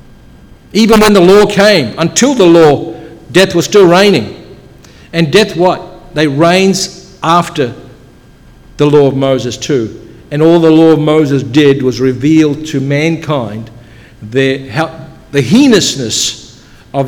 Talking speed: 135 wpm